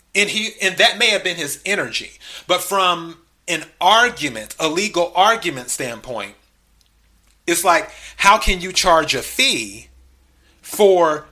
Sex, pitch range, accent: male, 130-175 Hz, American